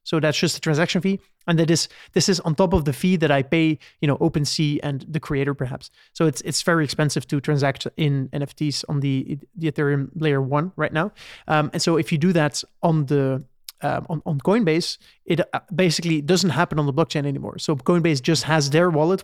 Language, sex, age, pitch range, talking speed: English, male, 30-49, 150-175 Hz, 220 wpm